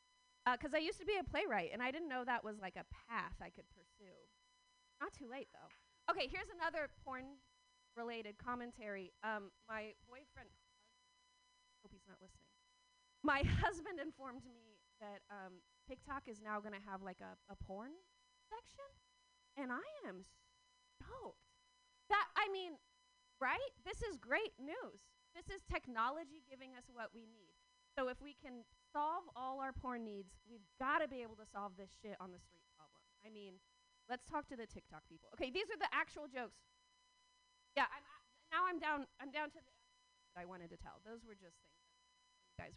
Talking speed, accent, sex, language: 185 wpm, American, female, English